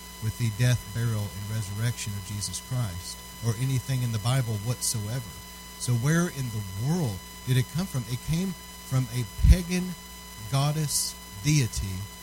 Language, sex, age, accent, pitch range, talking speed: English, male, 40-59, American, 90-125 Hz, 150 wpm